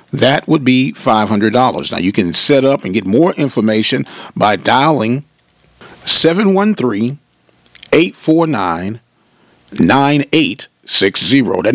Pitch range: 120-155 Hz